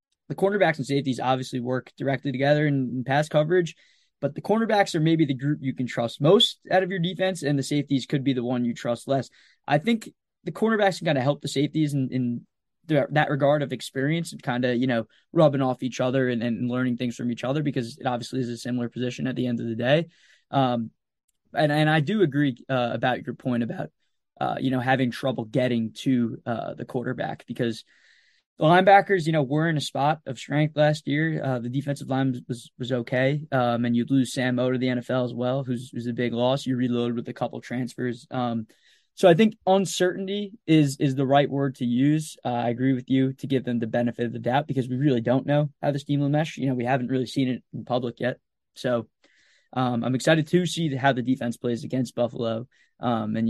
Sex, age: male, 20-39